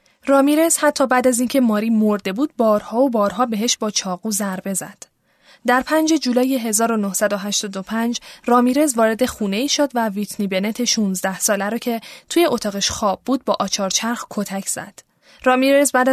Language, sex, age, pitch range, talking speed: Persian, female, 10-29, 205-255 Hz, 155 wpm